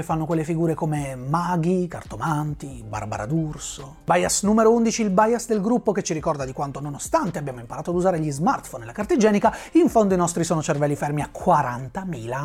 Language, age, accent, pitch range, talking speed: Italian, 30-49, native, 160-220 Hz, 195 wpm